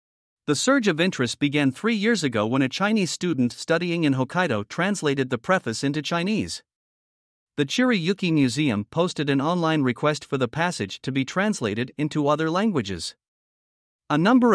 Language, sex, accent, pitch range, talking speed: English, male, American, 130-175 Hz, 155 wpm